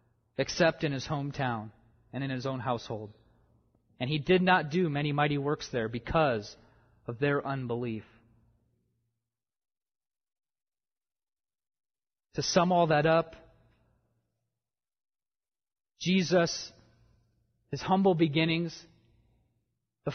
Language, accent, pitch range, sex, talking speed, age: English, American, 115-170 Hz, male, 95 wpm, 30-49